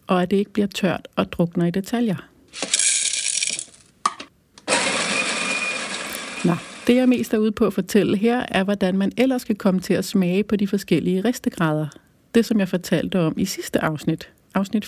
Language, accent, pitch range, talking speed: Danish, native, 180-225 Hz, 170 wpm